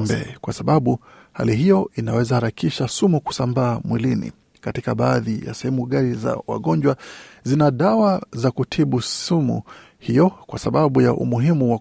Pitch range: 120-150 Hz